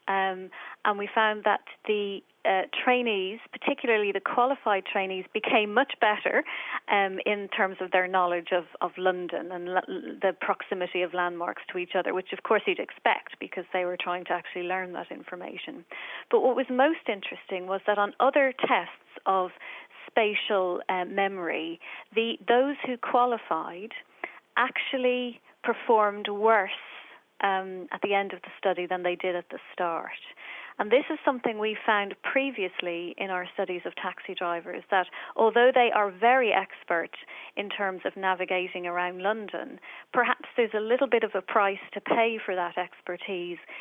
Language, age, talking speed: English, 30-49, 165 wpm